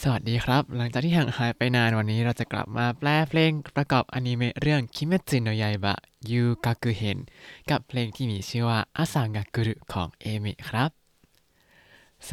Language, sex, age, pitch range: Thai, male, 20-39, 115-145 Hz